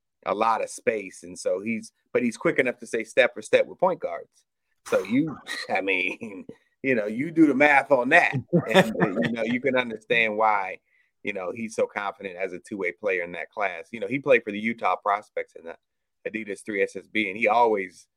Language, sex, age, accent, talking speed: English, male, 30-49, American, 220 wpm